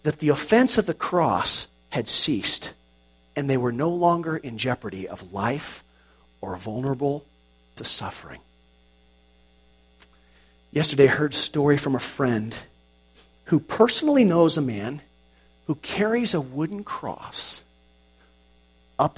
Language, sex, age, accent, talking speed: English, male, 50-69, American, 125 wpm